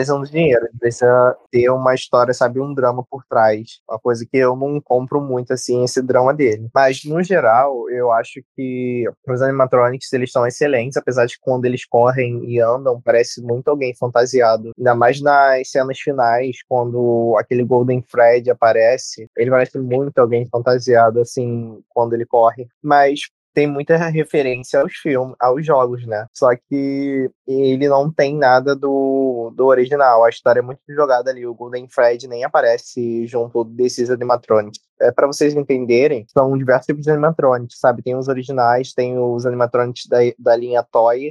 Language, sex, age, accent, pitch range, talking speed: Portuguese, male, 20-39, Brazilian, 120-135 Hz, 170 wpm